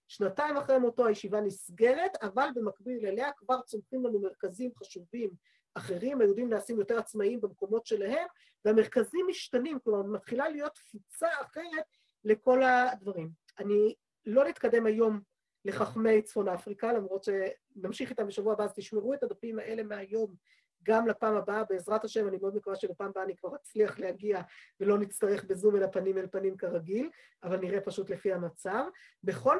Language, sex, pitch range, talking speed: Hebrew, female, 205-265 Hz, 150 wpm